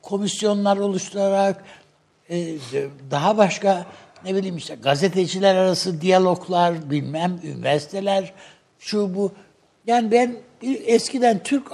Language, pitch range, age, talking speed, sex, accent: Turkish, 160-210 Hz, 60-79, 90 wpm, male, native